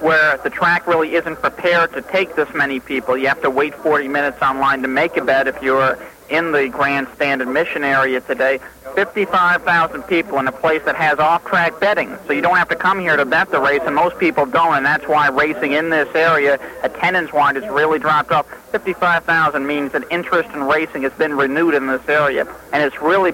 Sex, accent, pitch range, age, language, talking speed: male, American, 140-170 Hz, 40-59, English, 215 wpm